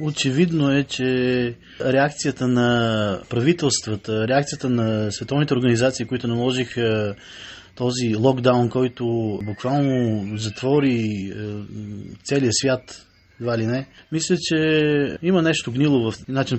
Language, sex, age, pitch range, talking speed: Bulgarian, male, 20-39, 115-140 Hz, 105 wpm